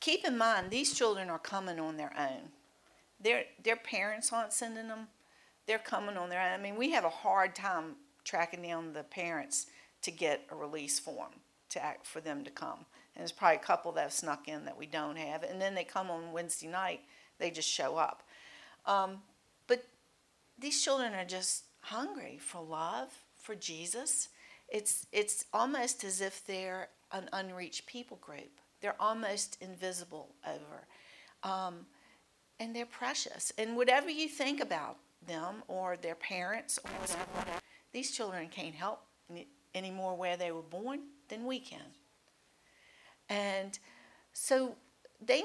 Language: English